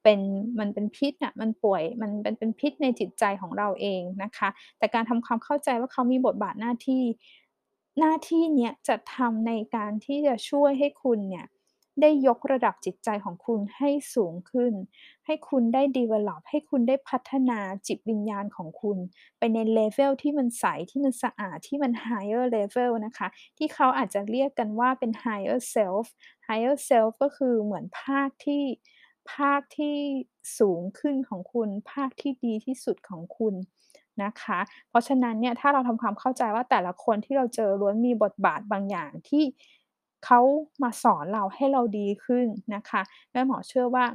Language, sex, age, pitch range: Thai, female, 20-39, 210-270 Hz